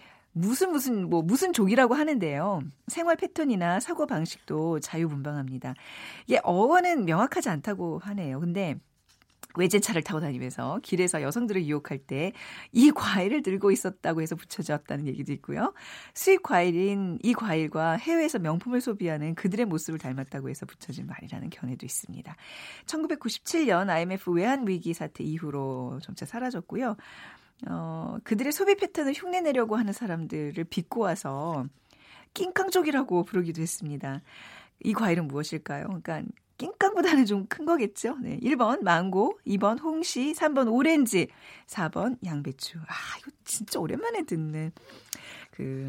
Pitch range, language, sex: 160-250 Hz, Korean, female